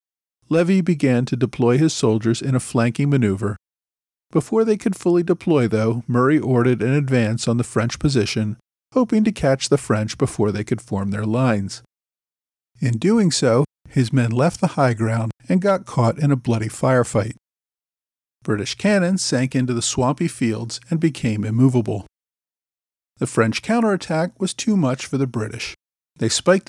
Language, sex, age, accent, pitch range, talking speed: English, male, 50-69, American, 115-155 Hz, 160 wpm